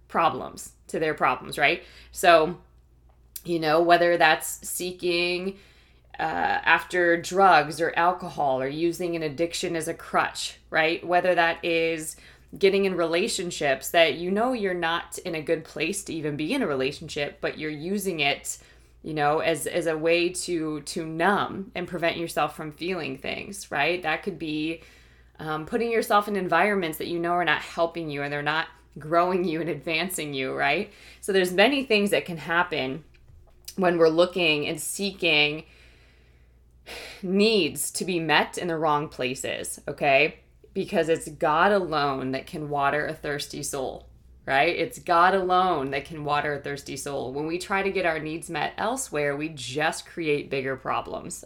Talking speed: 170 wpm